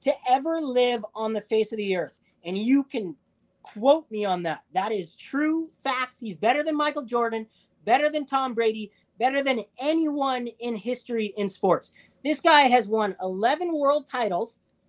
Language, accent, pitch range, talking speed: English, American, 215-285 Hz, 175 wpm